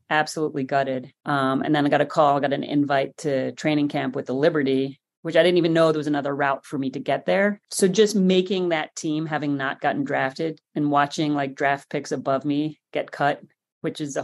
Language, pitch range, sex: English, 145-190 Hz, female